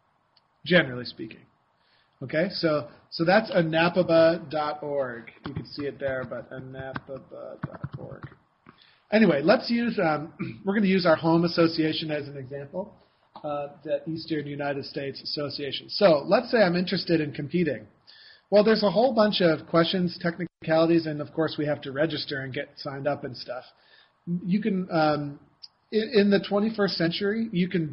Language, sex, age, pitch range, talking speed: English, male, 40-59, 145-180 Hz, 155 wpm